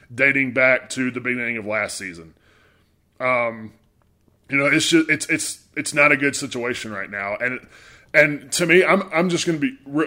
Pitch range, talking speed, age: 125-160 Hz, 185 wpm, 20-39